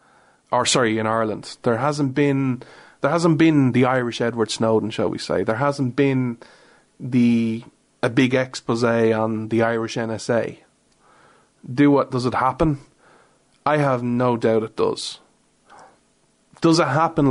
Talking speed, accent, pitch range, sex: 145 wpm, Irish, 115-135 Hz, male